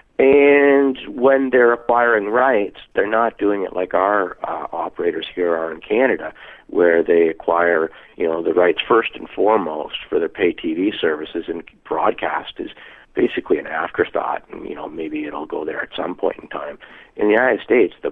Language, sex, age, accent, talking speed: English, male, 50-69, American, 180 wpm